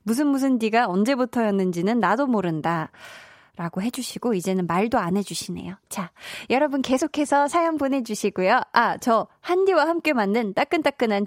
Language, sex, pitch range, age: Korean, female, 195-265 Hz, 20-39